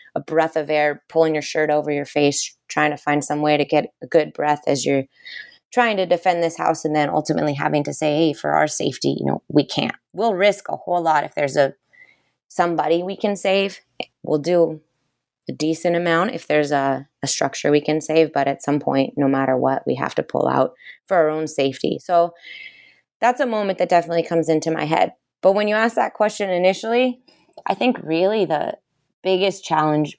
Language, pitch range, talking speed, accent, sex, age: English, 145-185 Hz, 210 wpm, American, female, 20-39